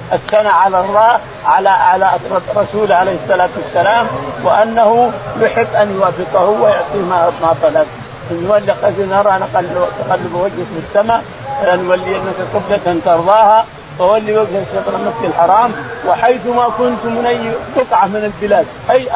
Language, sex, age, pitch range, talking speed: Arabic, male, 50-69, 185-230 Hz, 140 wpm